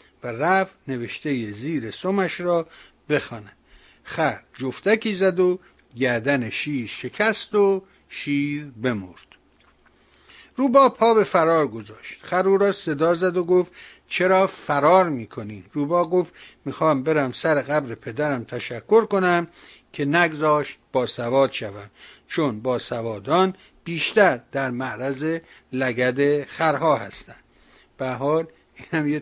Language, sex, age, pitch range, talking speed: Persian, male, 60-79, 125-165 Hz, 115 wpm